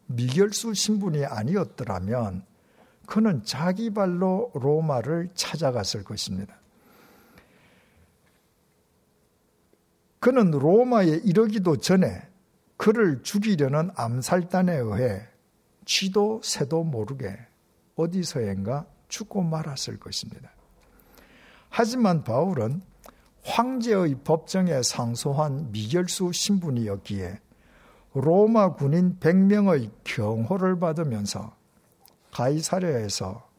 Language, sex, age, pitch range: Korean, male, 60-79, 120-180 Hz